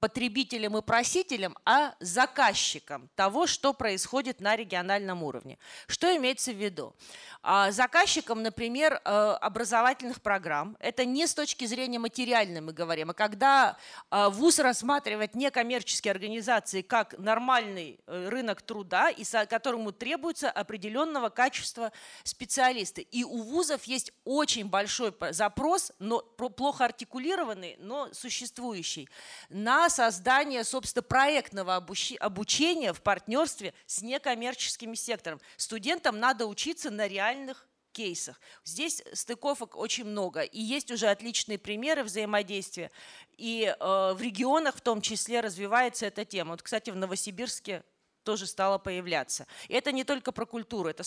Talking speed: 120 wpm